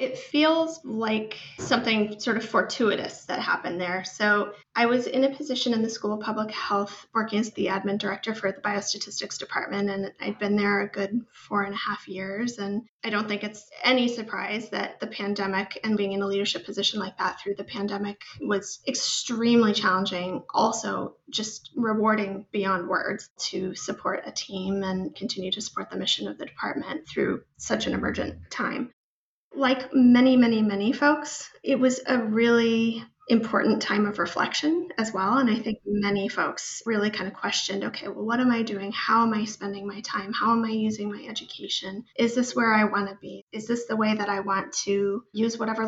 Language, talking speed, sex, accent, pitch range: English, 195 wpm, female, American, 200-235 Hz